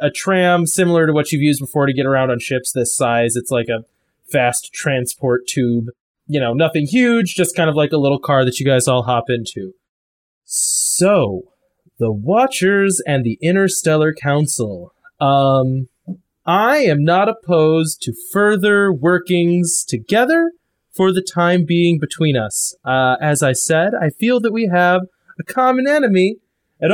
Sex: male